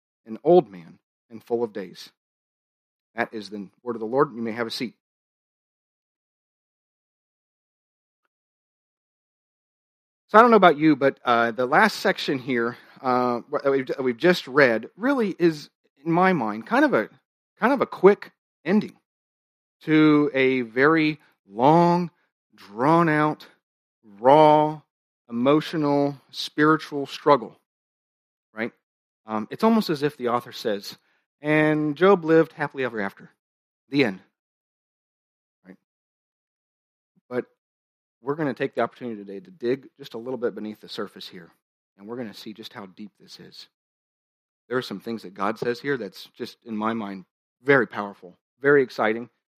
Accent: American